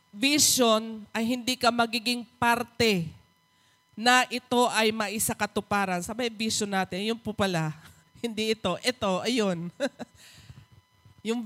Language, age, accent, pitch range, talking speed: English, 20-39, Filipino, 195-245 Hz, 110 wpm